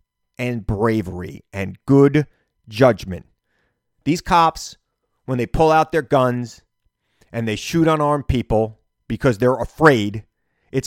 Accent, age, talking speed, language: American, 30-49, 120 wpm, English